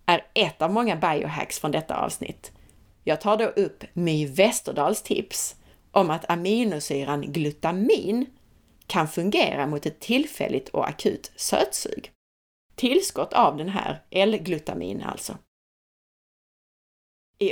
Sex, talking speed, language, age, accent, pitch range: female, 115 wpm, Swedish, 30-49, native, 150-205 Hz